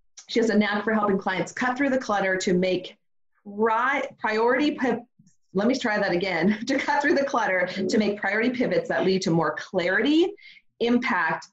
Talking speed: 185 wpm